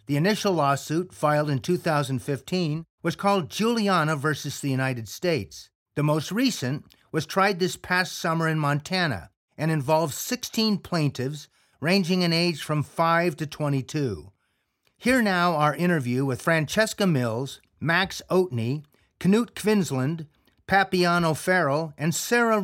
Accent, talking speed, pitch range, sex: American, 135 wpm, 145-195 Hz, male